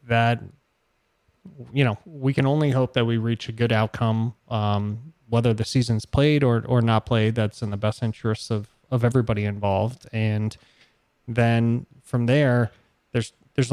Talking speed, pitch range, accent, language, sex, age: 160 wpm, 110-125 Hz, American, English, male, 20-39